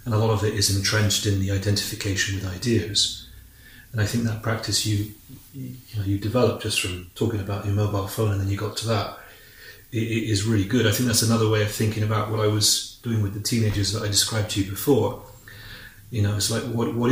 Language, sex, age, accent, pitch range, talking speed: English, male, 30-49, British, 105-115 Hz, 235 wpm